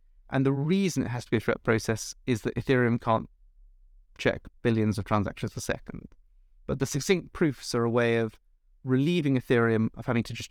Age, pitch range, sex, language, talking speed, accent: 30-49, 110-140 Hz, male, English, 195 wpm, British